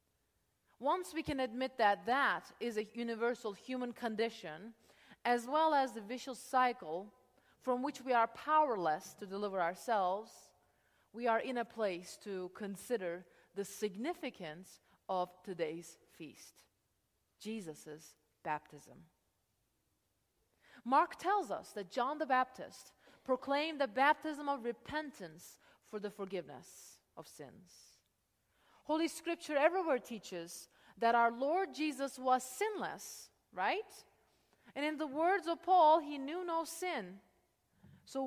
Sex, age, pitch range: female, 30-49, 185-290 Hz